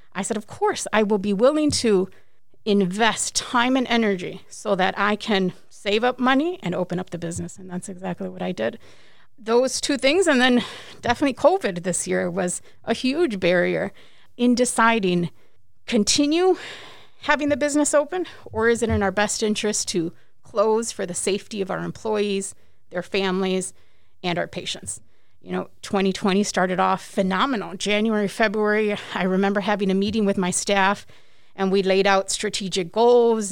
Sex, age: female, 30-49